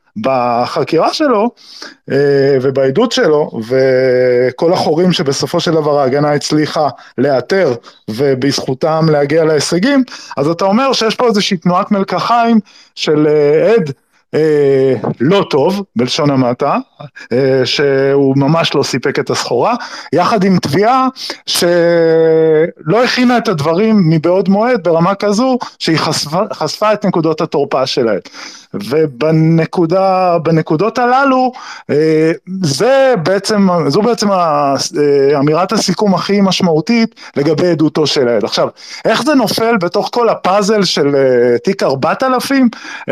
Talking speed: 110 wpm